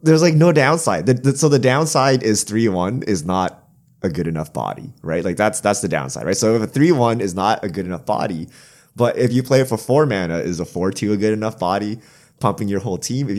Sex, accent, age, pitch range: male, American, 20-39, 95-135 Hz